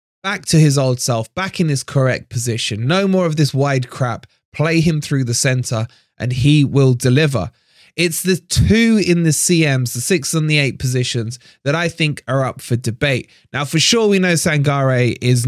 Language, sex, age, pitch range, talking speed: English, male, 20-39, 130-175 Hz, 200 wpm